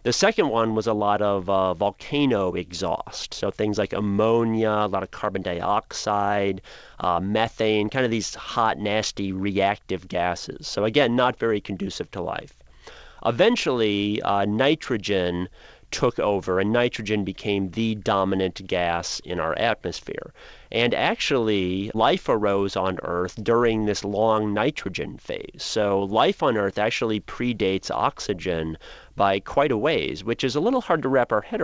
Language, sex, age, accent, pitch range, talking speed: English, male, 30-49, American, 95-115 Hz, 150 wpm